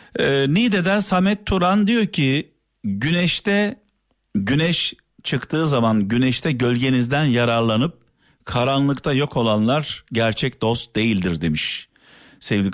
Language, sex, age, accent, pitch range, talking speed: Turkish, male, 50-69, native, 105-150 Hz, 95 wpm